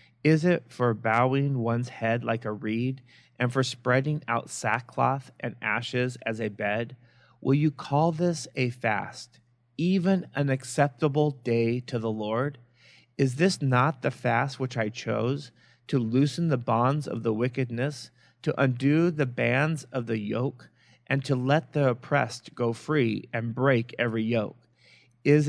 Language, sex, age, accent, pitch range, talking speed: English, male, 30-49, American, 120-145 Hz, 155 wpm